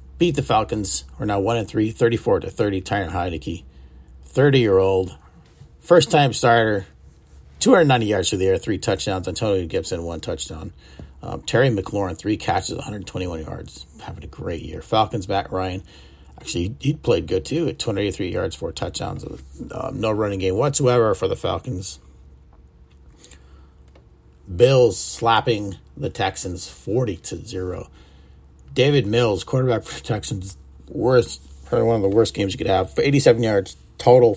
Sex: male